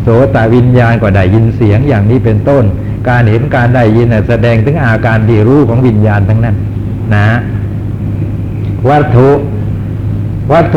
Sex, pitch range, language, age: male, 105-125 Hz, Thai, 60-79